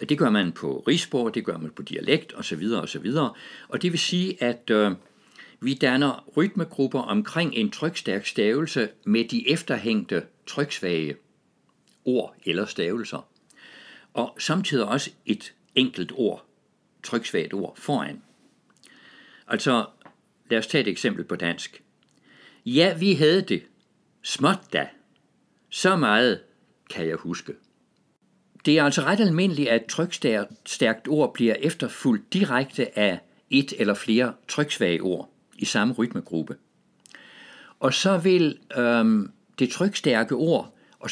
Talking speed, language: 125 wpm, Danish